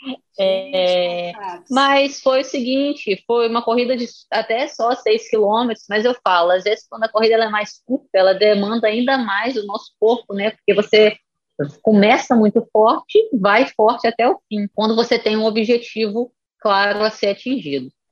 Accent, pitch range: Brazilian, 200-240 Hz